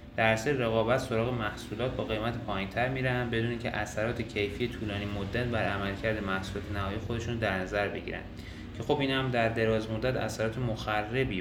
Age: 20-39